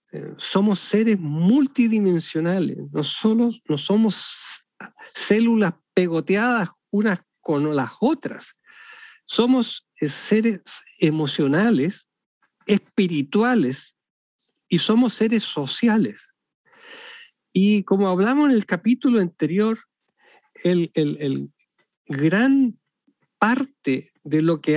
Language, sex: Spanish, male